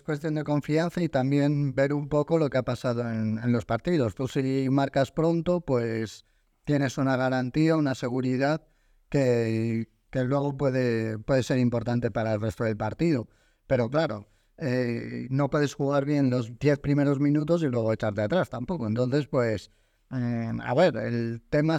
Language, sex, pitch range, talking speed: Spanish, male, 120-150 Hz, 170 wpm